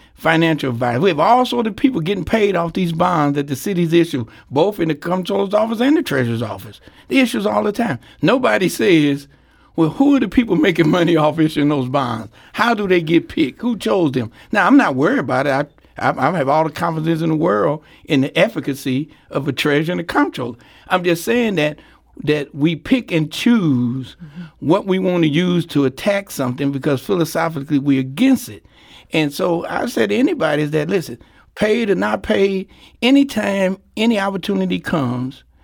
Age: 60-79